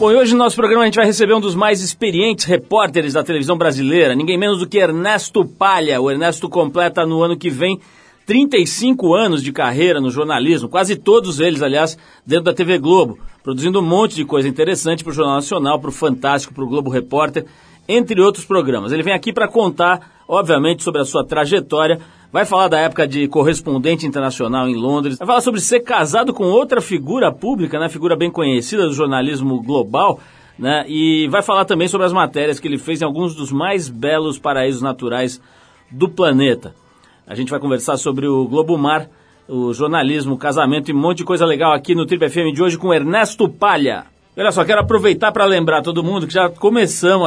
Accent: Brazilian